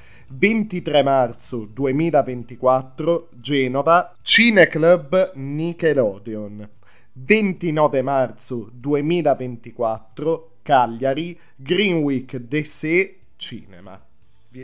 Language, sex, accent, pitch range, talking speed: Italian, male, native, 120-170 Hz, 65 wpm